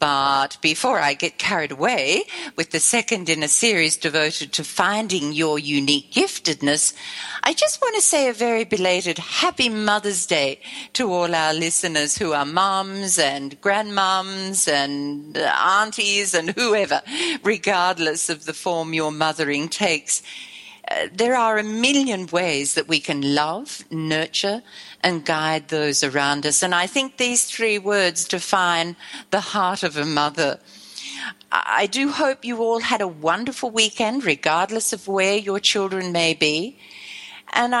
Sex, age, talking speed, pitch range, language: female, 50-69, 150 wpm, 155-230 Hz, English